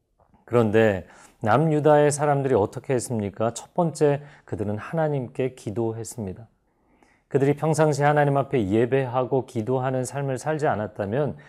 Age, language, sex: 40-59, Korean, male